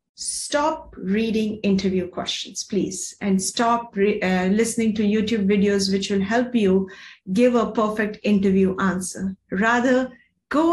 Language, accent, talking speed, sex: English, Indian, 130 wpm, female